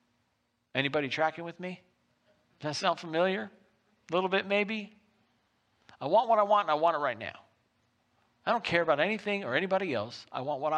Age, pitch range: 50-69, 150-205 Hz